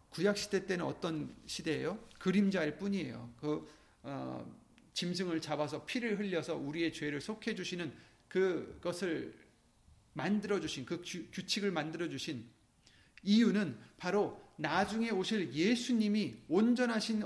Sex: male